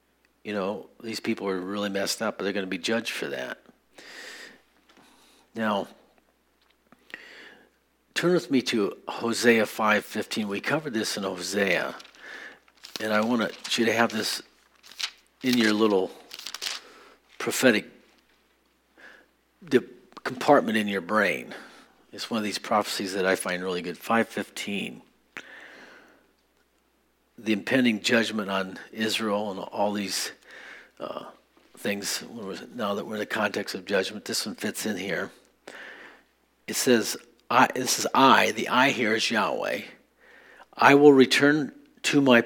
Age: 50-69